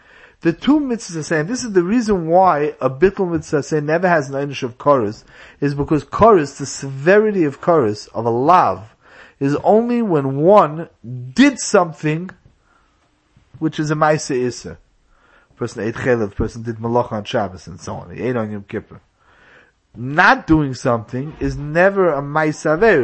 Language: English